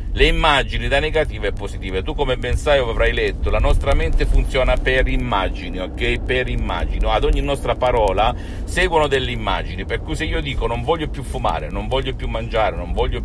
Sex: male